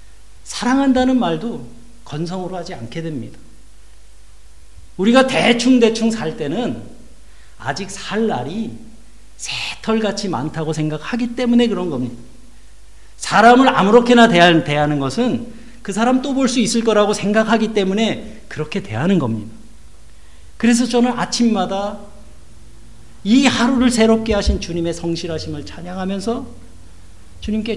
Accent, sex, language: native, male, Korean